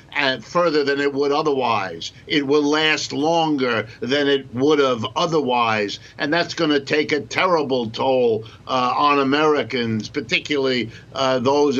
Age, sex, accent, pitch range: 60-79, male, American, 130-160 Hz